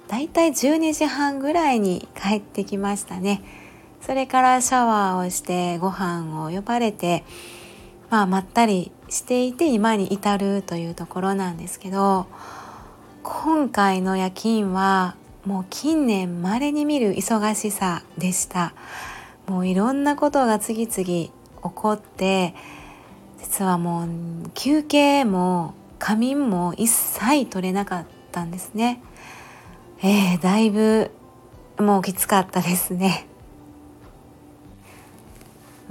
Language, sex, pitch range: Japanese, female, 185-230 Hz